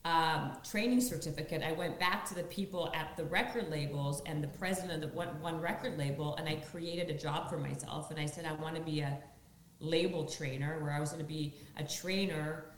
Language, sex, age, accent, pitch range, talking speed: English, female, 40-59, American, 150-170 Hz, 220 wpm